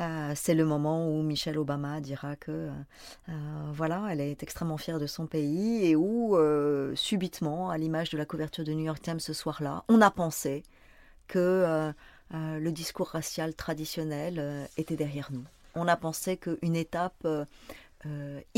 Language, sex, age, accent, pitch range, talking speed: French, female, 30-49, French, 155-185 Hz, 170 wpm